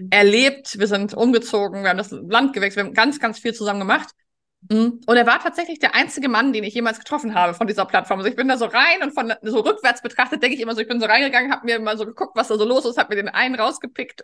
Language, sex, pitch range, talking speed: German, female, 210-260 Hz, 275 wpm